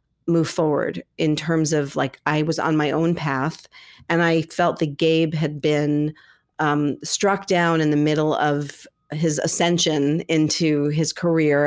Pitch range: 145-170 Hz